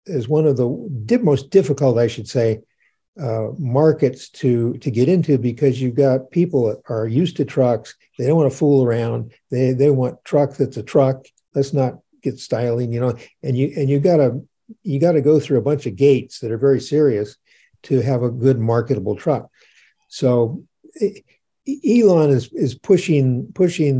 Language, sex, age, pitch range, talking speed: English, male, 50-69, 125-160 Hz, 185 wpm